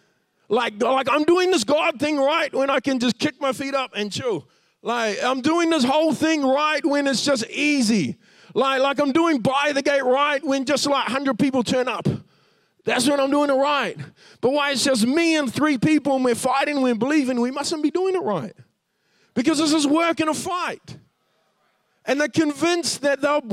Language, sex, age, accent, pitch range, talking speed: English, male, 40-59, American, 255-305 Hz, 205 wpm